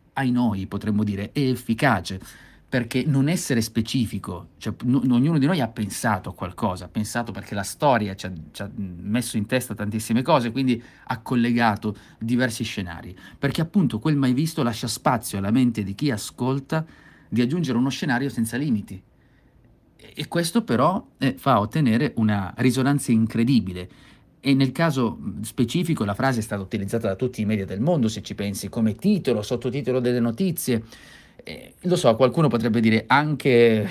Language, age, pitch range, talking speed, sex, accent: Italian, 30-49, 100-130 Hz, 170 wpm, male, native